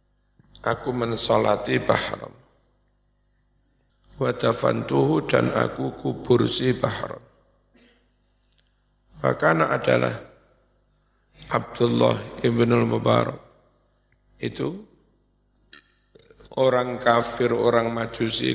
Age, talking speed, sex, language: 50-69, 60 wpm, male, Indonesian